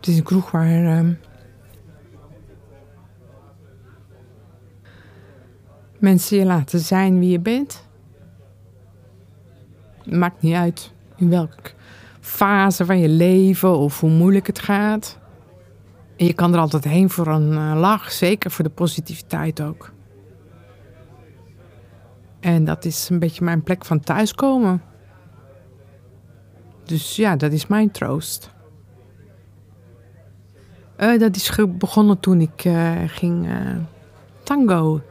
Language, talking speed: Dutch, 115 wpm